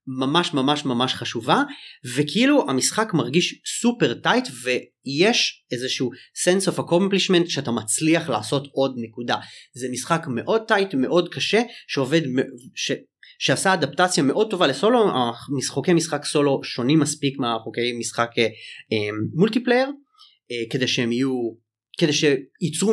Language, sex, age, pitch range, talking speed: Hebrew, male, 30-49, 125-180 Hz, 125 wpm